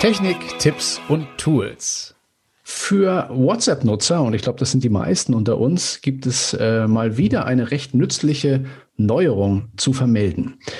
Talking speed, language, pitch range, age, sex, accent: 145 wpm, German, 105-140 Hz, 40-59, male, German